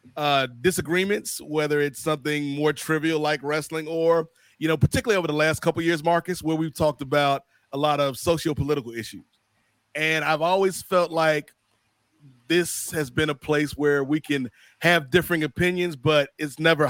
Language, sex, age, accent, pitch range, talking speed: English, male, 30-49, American, 135-165 Hz, 170 wpm